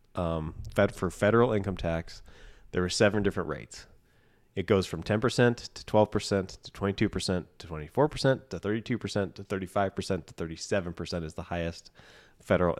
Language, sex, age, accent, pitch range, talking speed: English, male, 30-49, American, 95-115 Hz, 145 wpm